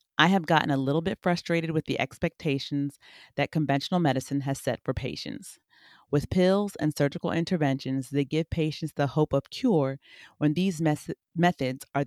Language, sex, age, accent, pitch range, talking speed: English, female, 30-49, American, 135-165 Hz, 165 wpm